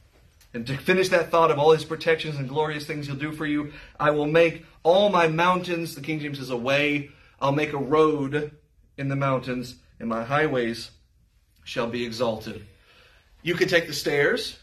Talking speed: 190 wpm